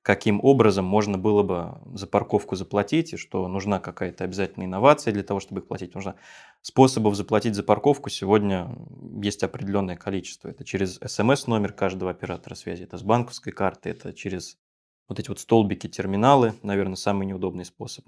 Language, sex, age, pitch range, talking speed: Russian, male, 20-39, 95-110 Hz, 165 wpm